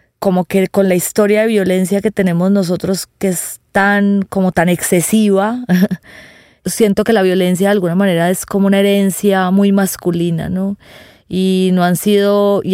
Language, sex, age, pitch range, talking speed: Spanish, female, 30-49, 175-195 Hz, 165 wpm